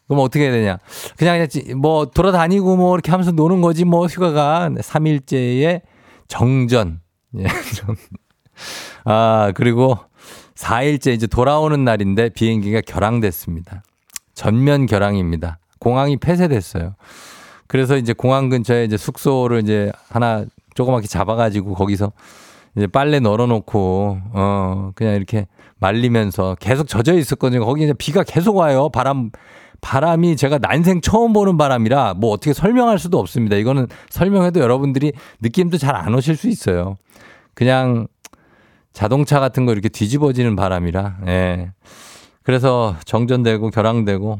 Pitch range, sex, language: 105-140 Hz, male, Korean